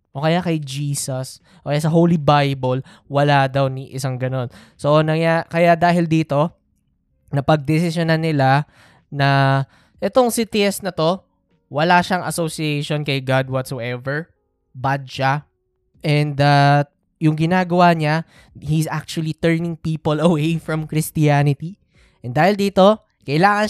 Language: Filipino